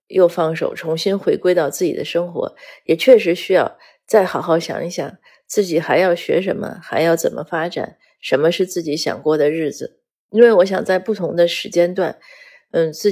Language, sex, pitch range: Chinese, female, 165-245 Hz